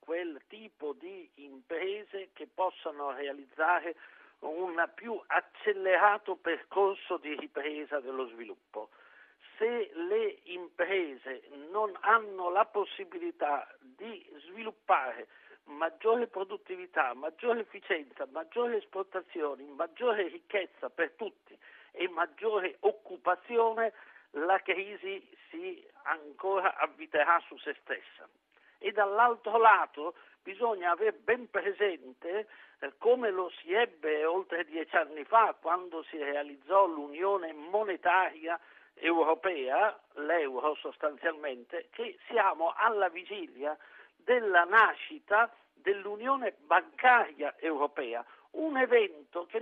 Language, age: Italian, 60-79